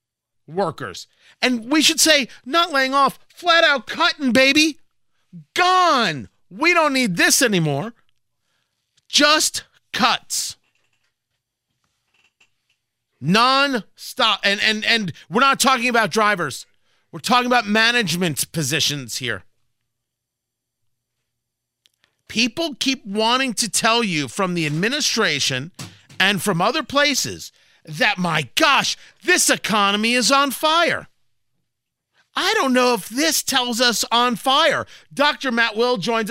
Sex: male